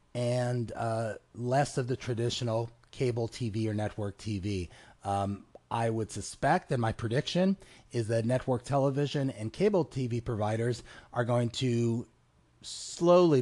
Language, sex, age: English, male, 30-49